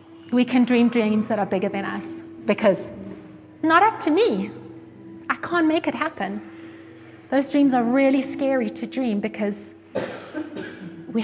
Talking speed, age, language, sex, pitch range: 150 wpm, 30-49, English, female, 205-260 Hz